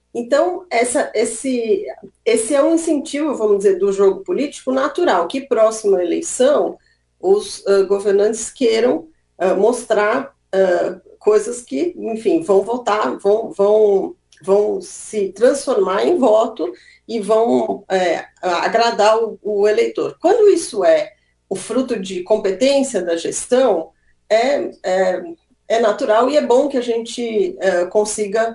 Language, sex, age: Portuguese, female, 40-59